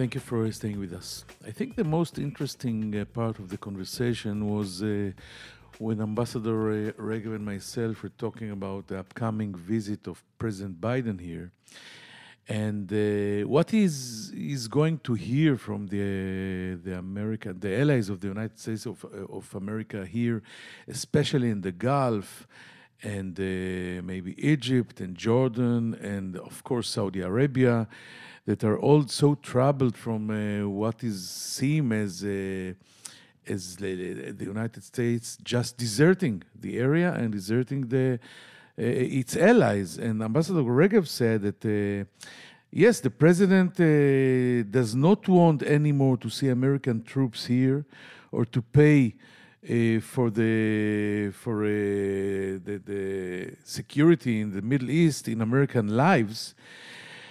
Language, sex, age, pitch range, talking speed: English, male, 50-69, 100-130 Hz, 145 wpm